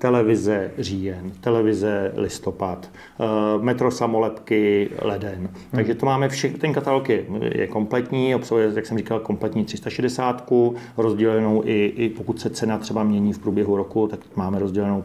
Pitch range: 105-120 Hz